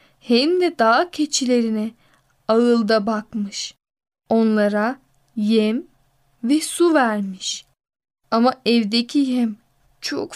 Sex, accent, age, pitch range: female, native, 10-29, 220-270 Hz